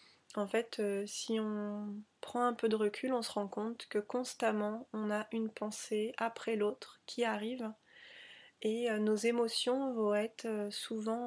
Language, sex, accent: French, female, French